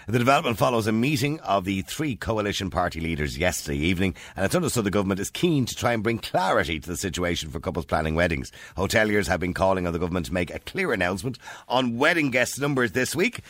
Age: 50-69